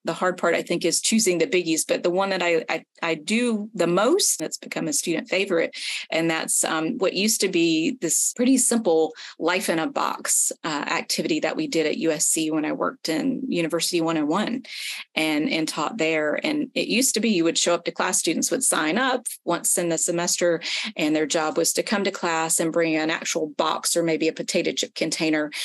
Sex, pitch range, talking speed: female, 165-230 Hz, 210 wpm